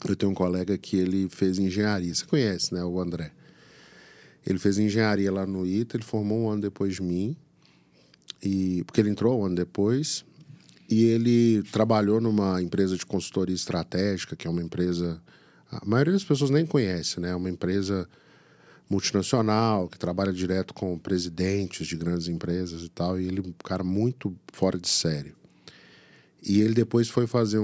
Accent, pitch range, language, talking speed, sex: Brazilian, 90-105 Hz, Portuguese, 175 wpm, male